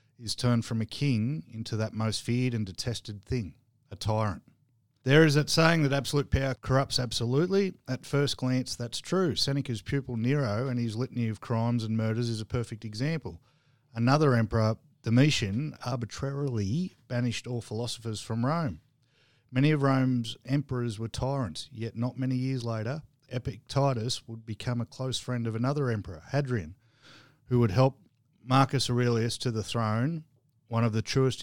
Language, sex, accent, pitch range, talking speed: English, male, Australian, 110-130 Hz, 160 wpm